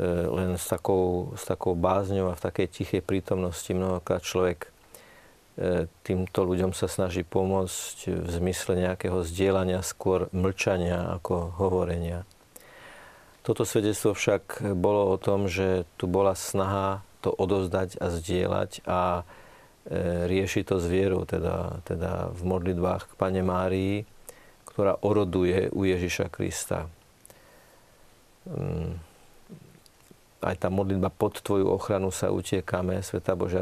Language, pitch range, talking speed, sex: Slovak, 90-95 Hz, 120 wpm, male